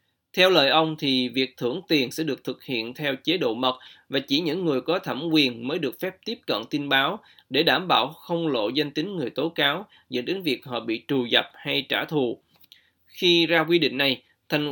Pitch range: 130-165 Hz